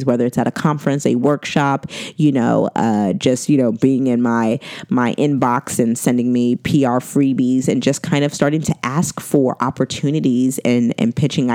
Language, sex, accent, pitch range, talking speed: English, female, American, 120-160 Hz, 180 wpm